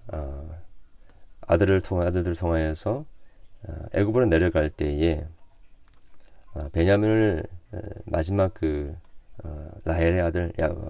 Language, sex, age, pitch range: Korean, male, 40-59, 80-100 Hz